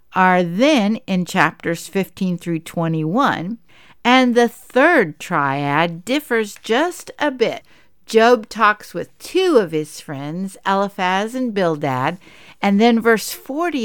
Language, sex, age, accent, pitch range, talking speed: English, female, 60-79, American, 175-235 Hz, 125 wpm